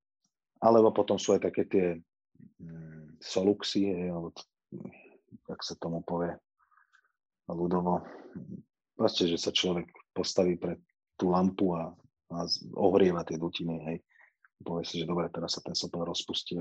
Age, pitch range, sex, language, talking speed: 30-49, 85-110 Hz, male, Slovak, 130 wpm